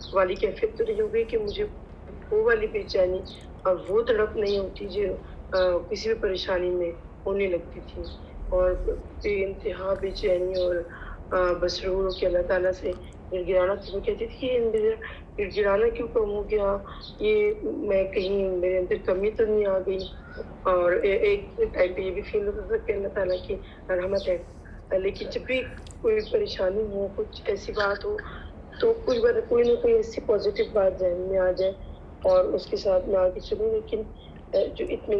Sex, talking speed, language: female, 110 wpm, English